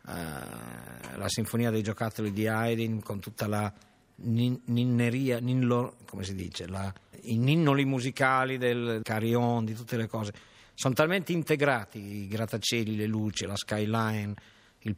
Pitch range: 100-125 Hz